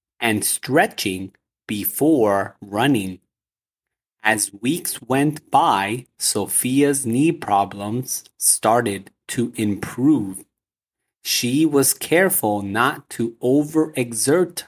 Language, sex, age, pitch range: English, male, 30-49, 105-145 Hz